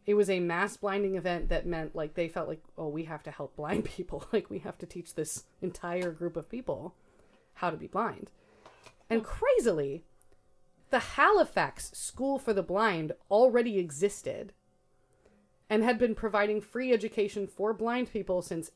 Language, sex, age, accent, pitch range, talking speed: English, female, 30-49, American, 155-210 Hz, 170 wpm